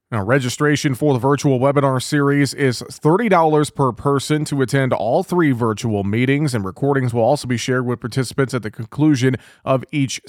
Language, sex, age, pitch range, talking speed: English, male, 30-49, 130-155 Hz, 175 wpm